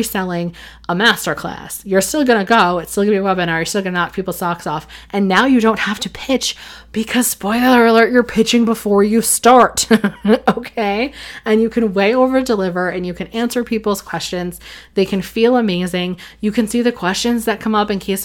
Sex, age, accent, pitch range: female, 20-39, American, 180-215 Hz